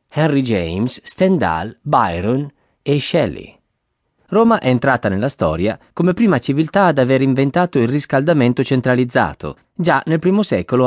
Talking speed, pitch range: 135 wpm, 110-155 Hz